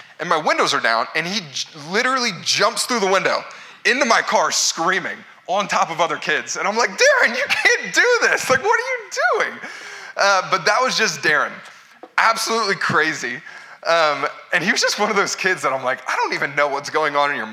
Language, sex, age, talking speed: English, male, 20-39, 215 wpm